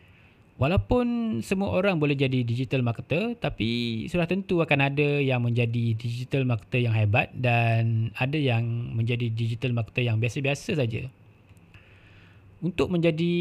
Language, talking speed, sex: Malay, 130 wpm, male